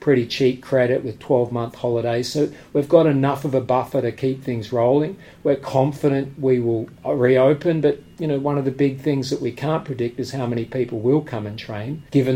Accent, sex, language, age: Australian, male, English, 40-59